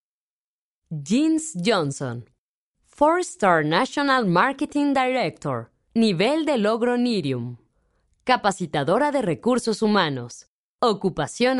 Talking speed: 85 wpm